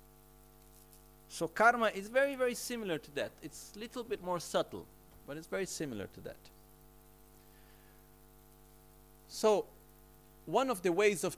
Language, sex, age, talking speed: Italian, male, 50-69, 135 wpm